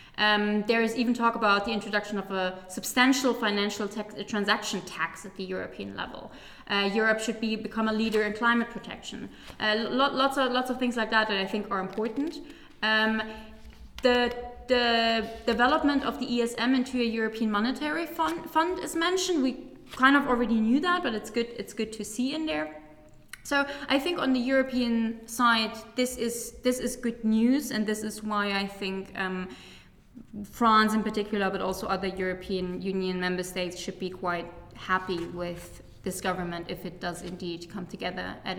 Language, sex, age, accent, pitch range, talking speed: English, female, 20-39, German, 200-255 Hz, 185 wpm